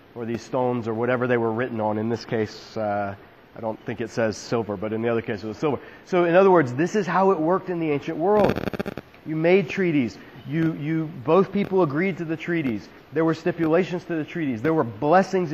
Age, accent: 30-49, American